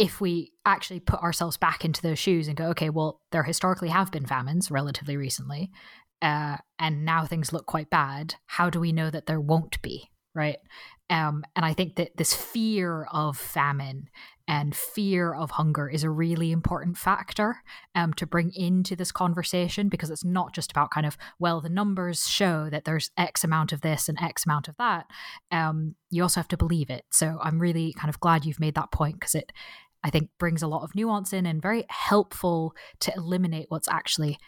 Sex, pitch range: female, 155-180 Hz